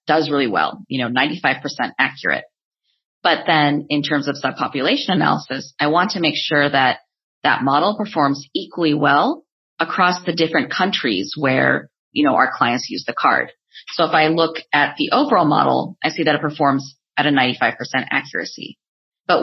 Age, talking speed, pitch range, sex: 30-49, 170 wpm, 140-160 Hz, female